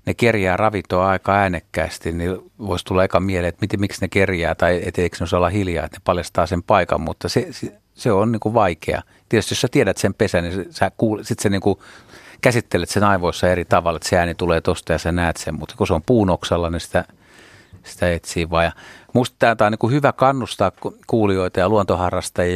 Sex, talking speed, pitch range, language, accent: male, 215 wpm, 85-105 Hz, Finnish, native